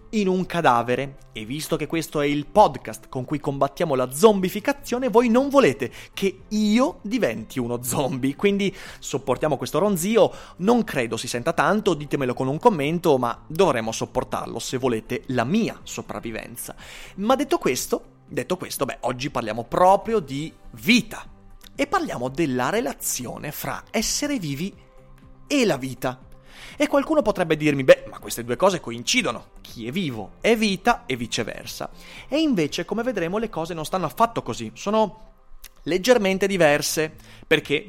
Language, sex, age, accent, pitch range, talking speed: Italian, male, 30-49, native, 125-210 Hz, 150 wpm